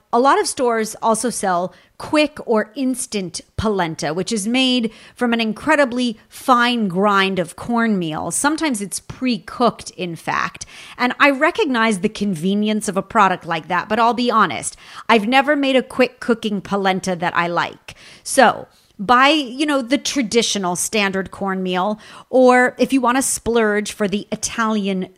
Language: English